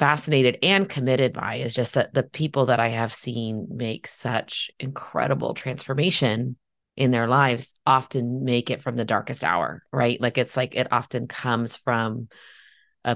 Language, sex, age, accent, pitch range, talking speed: English, female, 30-49, American, 120-145 Hz, 165 wpm